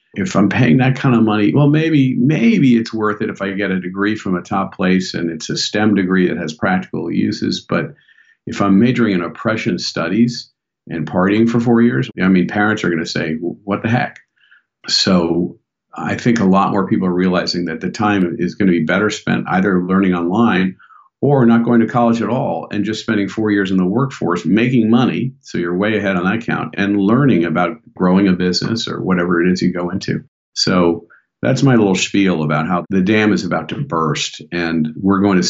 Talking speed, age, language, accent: 220 wpm, 50-69, English, American